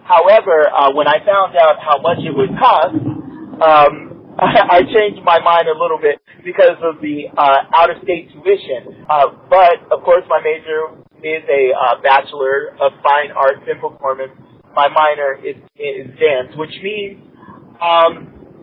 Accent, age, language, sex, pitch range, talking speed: American, 40-59, English, male, 145-200 Hz, 160 wpm